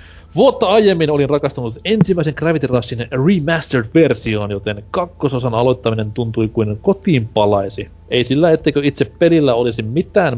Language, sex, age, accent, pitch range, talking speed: Finnish, male, 30-49, native, 105-145 Hz, 125 wpm